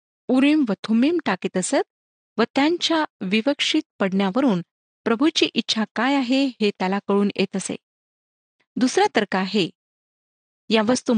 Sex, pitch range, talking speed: female, 200-270 Hz, 130 wpm